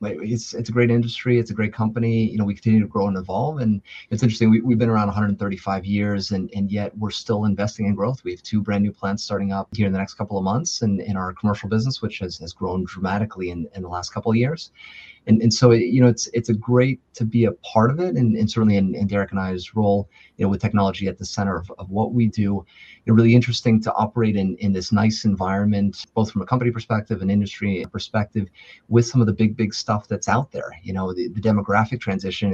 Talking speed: 255 wpm